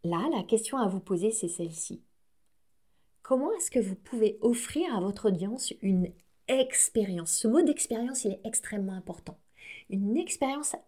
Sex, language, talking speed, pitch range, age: female, French, 155 wpm, 195-255 Hz, 30-49